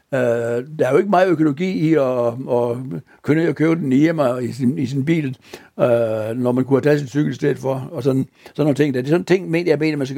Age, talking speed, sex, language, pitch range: 60-79, 230 wpm, male, Danish, 125-155 Hz